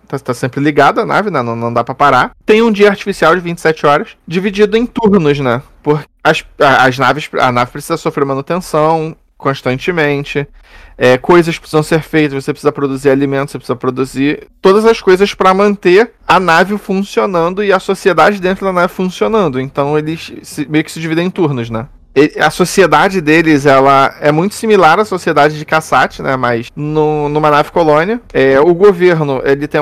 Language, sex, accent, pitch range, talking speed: Portuguese, male, Brazilian, 140-185 Hz, 185 wpm